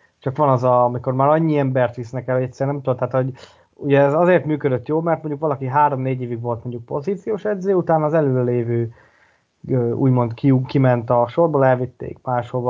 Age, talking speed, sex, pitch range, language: 20-39, 190 wpm, male, 125-150 Hz, Hungarian